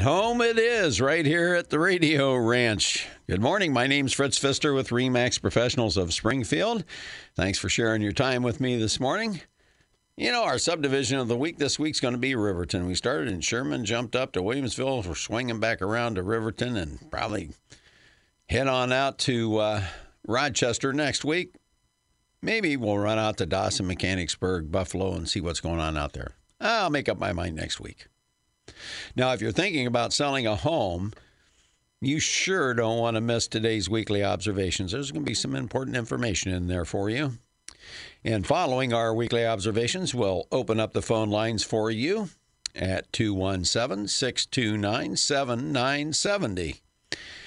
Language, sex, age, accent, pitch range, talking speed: English, male, 60-79, American, 100-135 Hz, 170 wpm